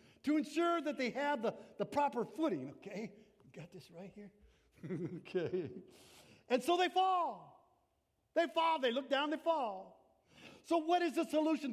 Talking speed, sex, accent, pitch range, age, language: 160 wpm, male, American, 175-275 Hz, 60-79, English